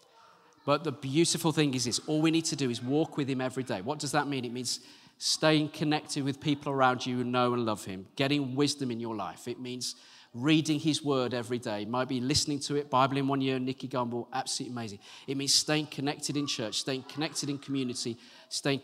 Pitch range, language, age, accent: 135-225 Hz, English, 40-59, British